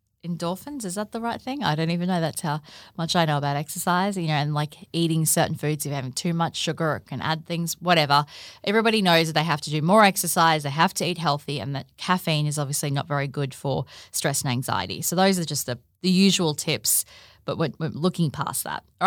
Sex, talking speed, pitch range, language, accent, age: female, 240 wpm, 155-190 Hz, English, Australian, 20-39